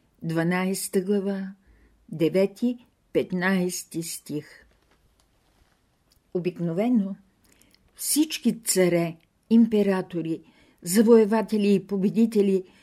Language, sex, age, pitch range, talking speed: Bulgarian, female, 50-69, 175-215 Hz, 50 wpm